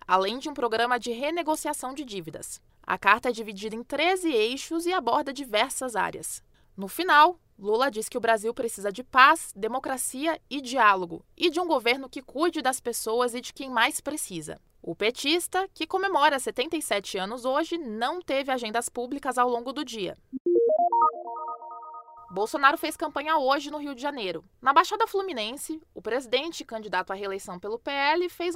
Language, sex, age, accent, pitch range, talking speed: English, female, 20-39, Brazilian, 230-315 Hz, 165 wpm